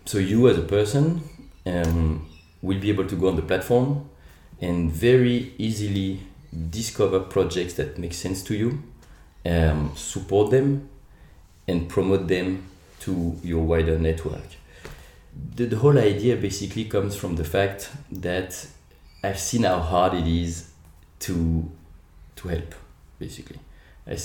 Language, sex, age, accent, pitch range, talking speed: French, male, 30-49, French, 80-100 Hz, 135 wpm